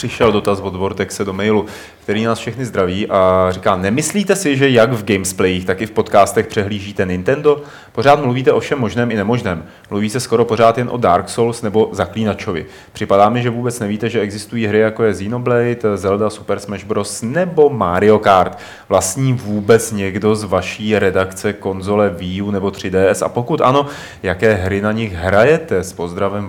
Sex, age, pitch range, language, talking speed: male, 30-49, 95-115 Hz, Czech, 180 wpm